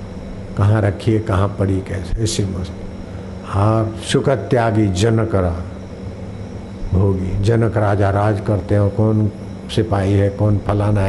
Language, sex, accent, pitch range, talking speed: Hindi, male, native, 95-110 Hz, 120 wpm